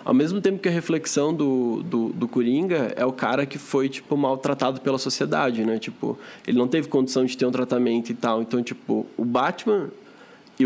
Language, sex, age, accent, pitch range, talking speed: Portuguese, male, 20-39, Brazilian, 120-145 Hz, 205 wpm